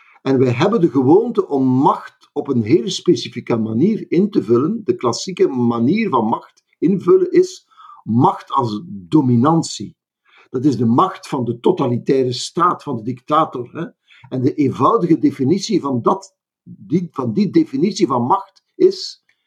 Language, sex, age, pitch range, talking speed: Dutch, male, 60-79, 135-210 Hz, 145 wpm